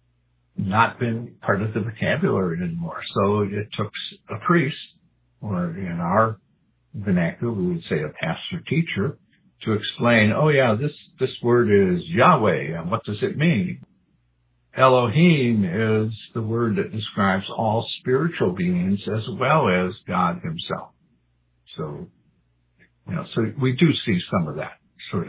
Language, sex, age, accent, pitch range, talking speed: English, male, 60-79, American, 90-130 Hz, 145 wpm